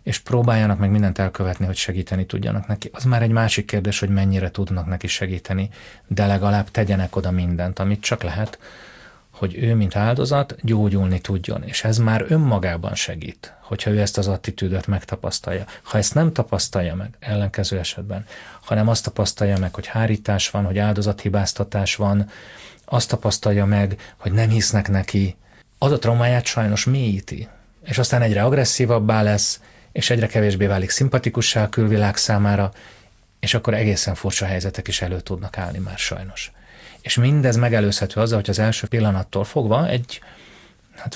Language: Hungarian